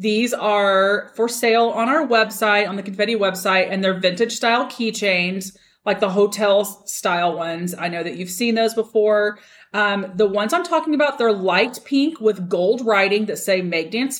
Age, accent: 30-49, American